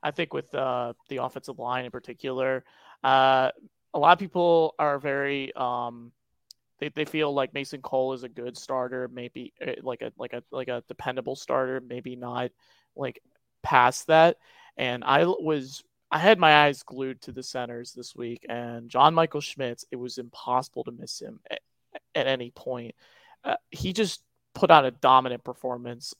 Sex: male